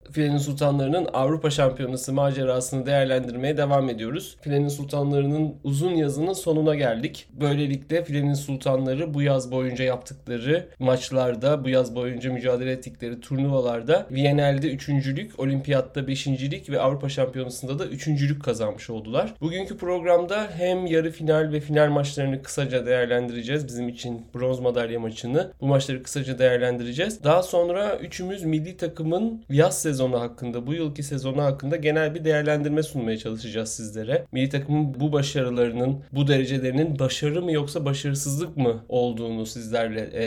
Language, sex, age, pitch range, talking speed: Turkish, male, 30-49, 125-150 Hz, 135 wpm